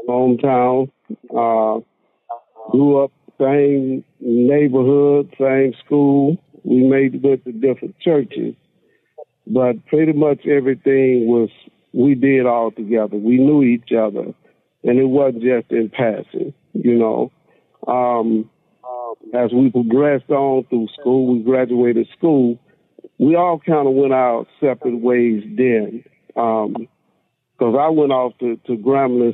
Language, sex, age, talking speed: English, male, 50-69, 125 wpm